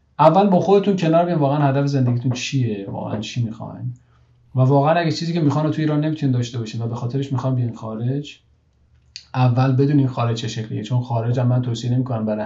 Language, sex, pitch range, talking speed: Persian, male, 120-145 Hz, 195 wpm